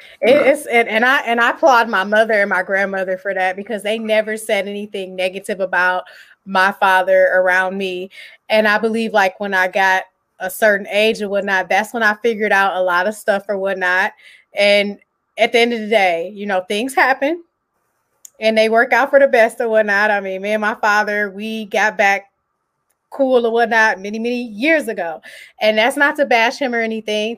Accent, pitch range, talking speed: American, 200-230 Hz, 200 wpm